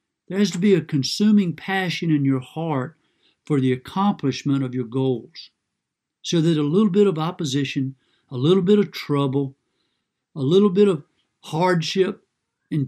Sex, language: male, English